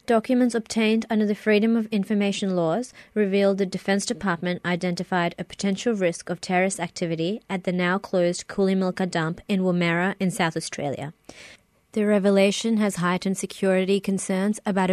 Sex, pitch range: female, 175-205 Hz